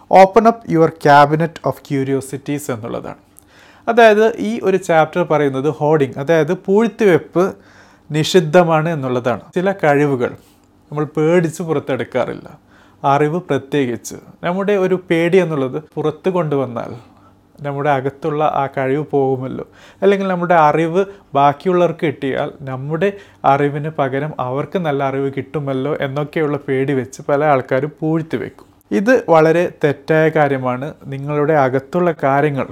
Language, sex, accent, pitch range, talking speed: Malayalam, male, native, 135-165 Hz, 115 wpm